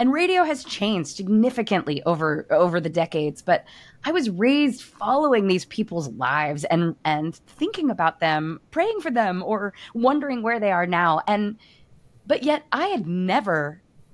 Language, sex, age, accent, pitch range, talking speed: English, female, 20-39, American, 180-250 Hz, 155 wpm